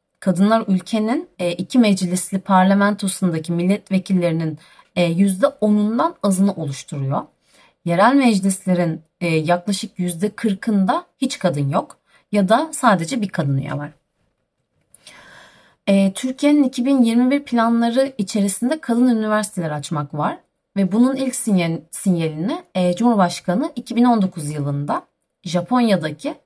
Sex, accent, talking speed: female, native, 90 wpm